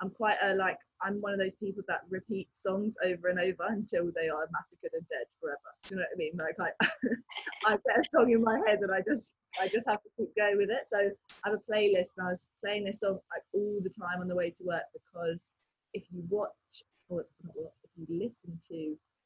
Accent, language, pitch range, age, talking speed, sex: British, English, 180-225 Hz, 20-39, 235 wpm, female